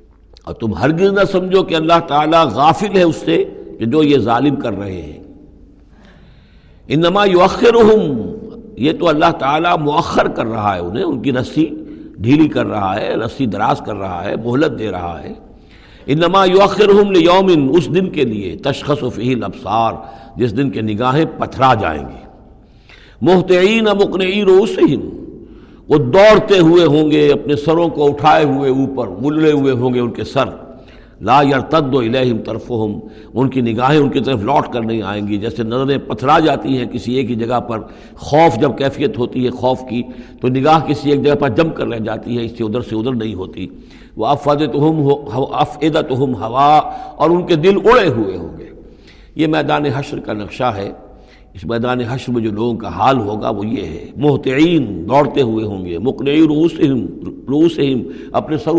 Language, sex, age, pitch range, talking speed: Urdu, male, 60-79, 120-160 Hz, 180 wpm